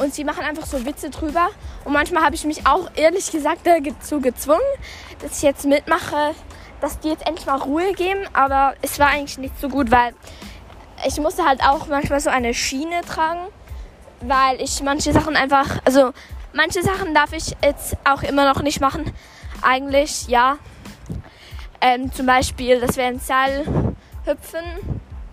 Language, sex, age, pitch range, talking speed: German, female, 10-29, 260-320 Hz, 165 wpm